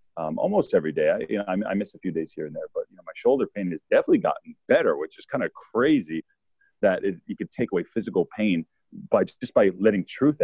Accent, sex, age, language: American, male, 40-59, English